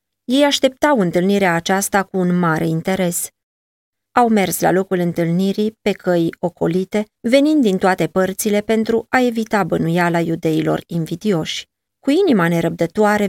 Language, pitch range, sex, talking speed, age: Romanian, 170-225 Hz, female, 130 wpm, 20-39